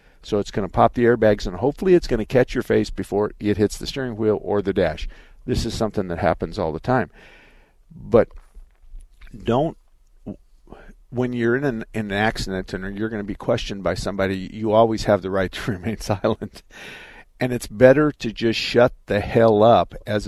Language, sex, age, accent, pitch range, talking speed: English, male, 50-69, American, 100-125 Hz, 195 wpm